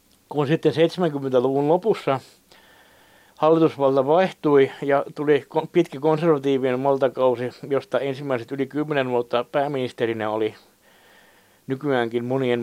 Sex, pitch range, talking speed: male, 120-145 Hz, 95 wpm